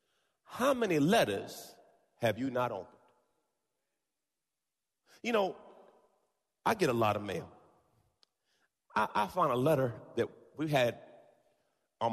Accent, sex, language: American, male, English